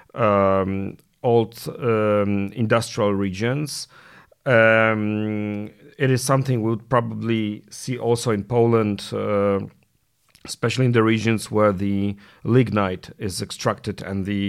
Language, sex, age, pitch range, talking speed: Polish, male, 40-59, 100-125 Hz, 115 wpm